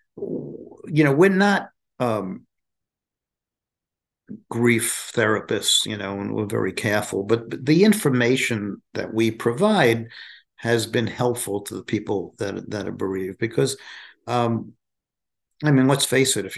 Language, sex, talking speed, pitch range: English, male, 135 wpm, 105-120 Hz